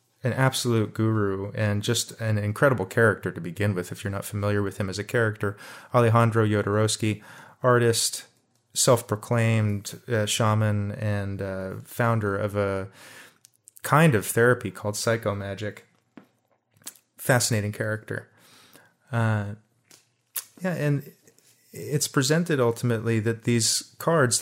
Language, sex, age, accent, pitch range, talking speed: English, male, 30-49, American, 110-125 Hz, 115 wpm